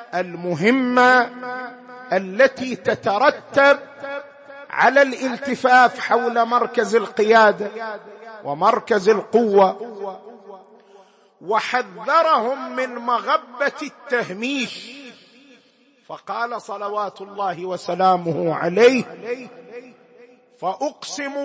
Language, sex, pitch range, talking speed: Arabic, male, 195-250 Hz, 55 wpm